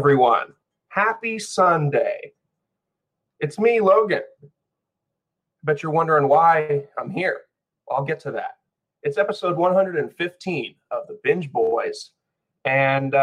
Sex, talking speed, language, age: male, 110 wpm, English, 30-49